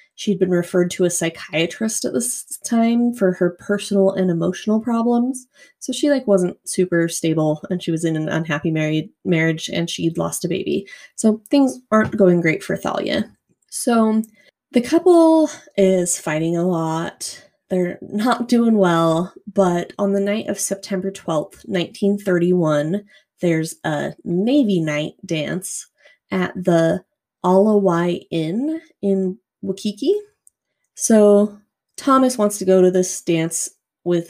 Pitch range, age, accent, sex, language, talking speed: 170-220 Hz, 20-39, American, female, English, 140 wpm